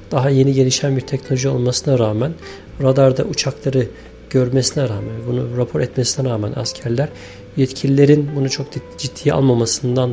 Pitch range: 120-140 Hz